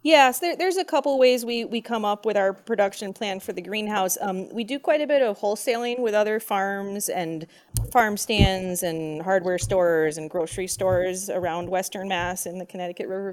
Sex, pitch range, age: female, 175-215 Hz, 30-49